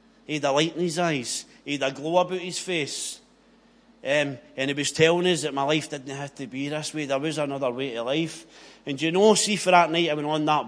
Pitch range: 140-175 Hz